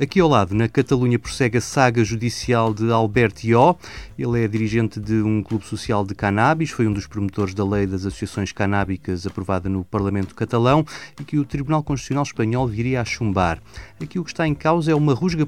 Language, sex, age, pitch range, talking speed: Portuguese, male, 30-49, 105-130 Hz, 200 wpm